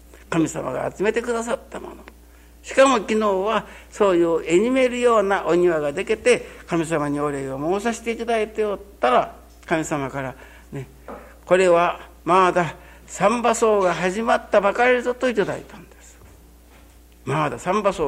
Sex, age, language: male, 60-79, Japanese